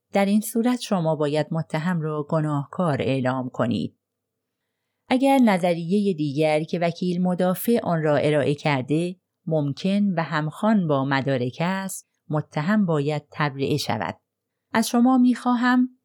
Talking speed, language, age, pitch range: 125 wpm, Persian, 30-49, 150-200 Hz